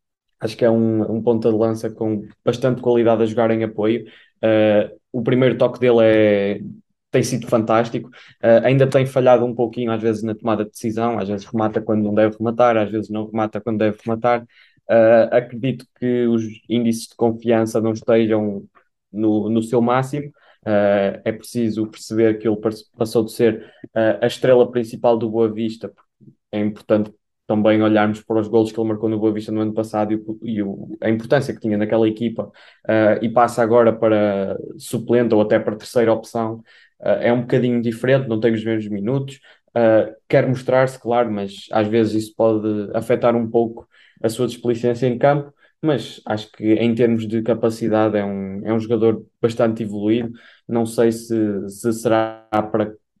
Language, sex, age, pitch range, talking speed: Portuguese, male, 20-39, 110-120 Hz, 175 wpm